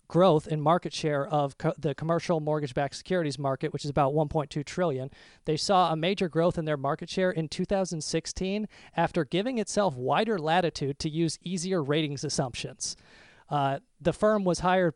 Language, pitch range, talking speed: English, 145-175 Hz, 170 wpm